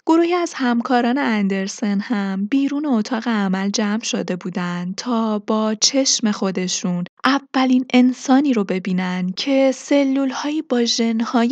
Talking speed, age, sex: 125 wpm, 20-39, female